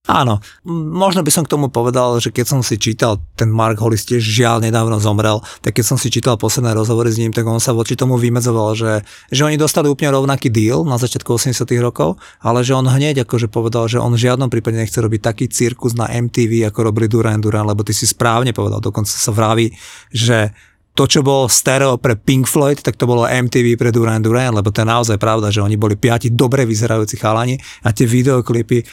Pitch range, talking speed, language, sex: 110-130 Hz, 215 wpm, Slovak, male